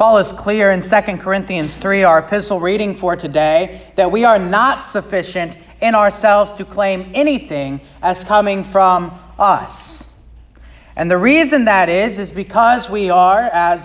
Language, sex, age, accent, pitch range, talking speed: English, male, 30-49, American, 170-215 Hz, 155 wpm